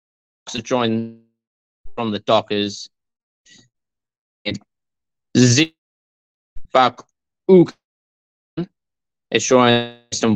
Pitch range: 110-150 Hz